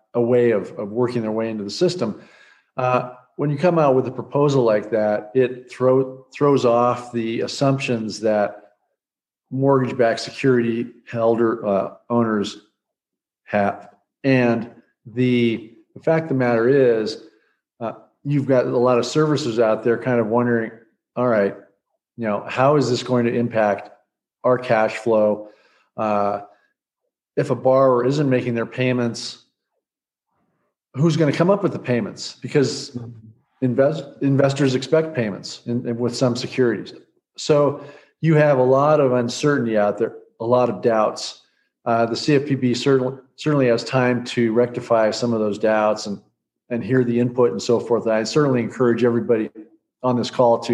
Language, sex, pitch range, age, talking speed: English, male, 115-135 Hz, 50-69, 160 wpm